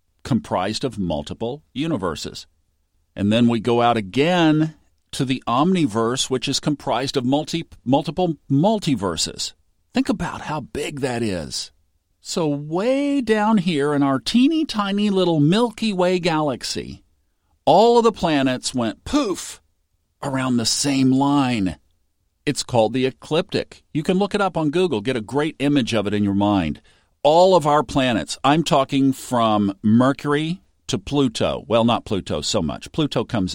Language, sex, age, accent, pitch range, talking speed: English, male, 50-69, American, 95-150 Hz, 150 wpm